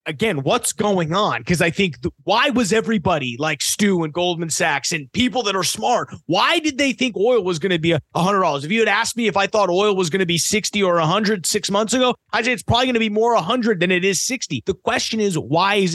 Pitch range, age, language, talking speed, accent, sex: 155-200 Hz, 30-49, English, 265 wpm, American, male